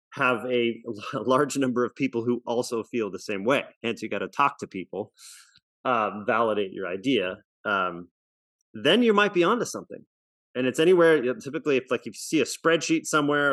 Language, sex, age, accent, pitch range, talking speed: English, male, 30-49, American, 110-140 Hz, 185 wpm